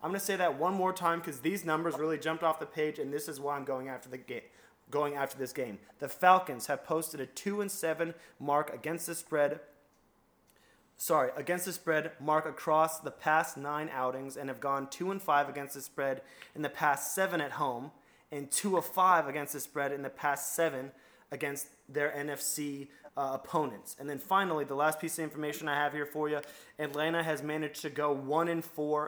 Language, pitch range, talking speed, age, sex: English, 140-160 Hz, 215 wpm, 20-39, male